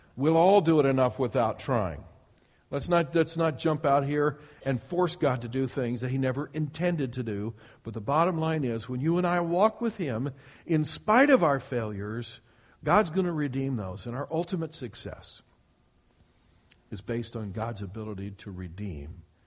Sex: male